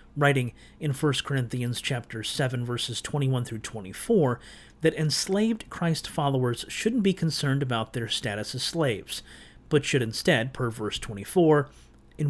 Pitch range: 120-155 Hz